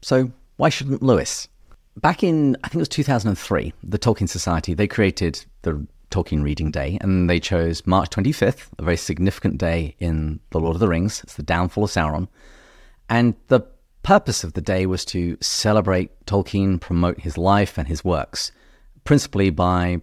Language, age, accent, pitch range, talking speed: English, 30-49, British, 85-110 Hz, 175 wpm